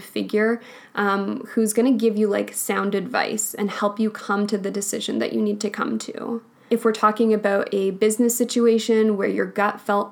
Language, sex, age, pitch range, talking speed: English, female, 10-29, 200-230 Hz, 200 wpm